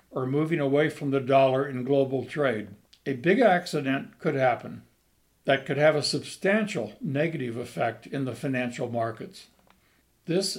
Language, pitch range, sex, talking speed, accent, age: English, 130-155 Hz, male, 140 wpm, American, 60-79